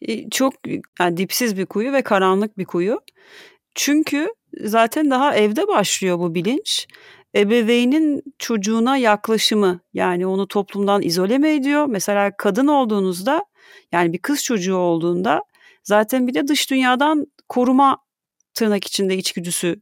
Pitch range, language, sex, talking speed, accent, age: 180-260 Hz, Turkish, female, 125 wpm, native, 40-59